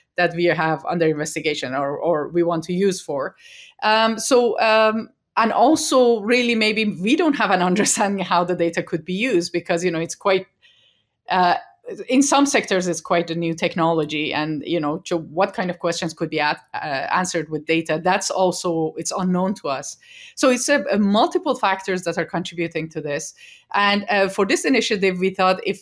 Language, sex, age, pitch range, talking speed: English, female, 30-49, 170-215 Hz, 195 wpm